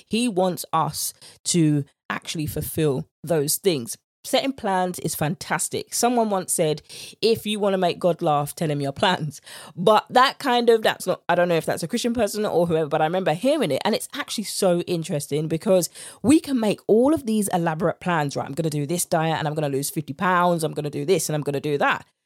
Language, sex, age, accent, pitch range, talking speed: English, female, 20-39, British, 160-240 Hz, 230 wpm